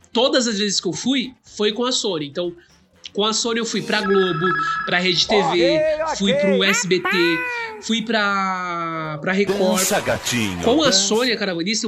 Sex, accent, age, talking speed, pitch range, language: male, Brazilian, 20-39, 155 wpm, 175-225 Hz, Portuguese